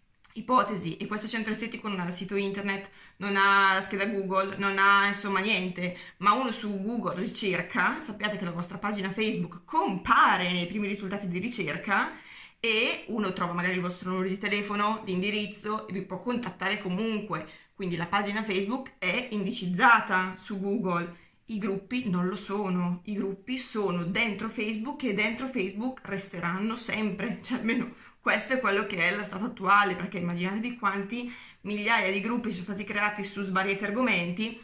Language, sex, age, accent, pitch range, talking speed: Italian, female, 20-39, native, 190-220 Hz, 165 wpm